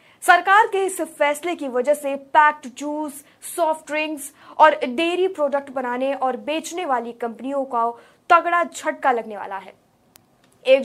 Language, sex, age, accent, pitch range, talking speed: Hindi, female, 20-39, native, 260-320 Hz, 145 wpm